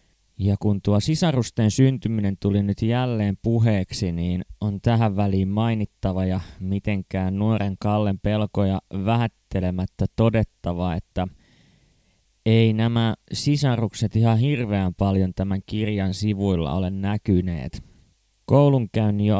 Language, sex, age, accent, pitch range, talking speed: Finnish, male, 20-39, native, 95-115 Hz, 110 wpm